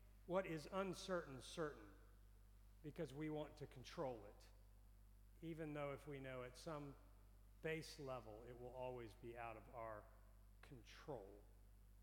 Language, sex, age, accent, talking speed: English, male, 50-69, American, 135 wpm